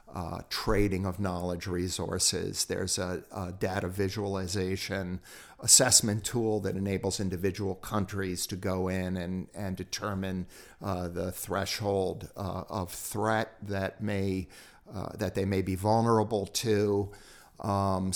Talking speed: 125 wpm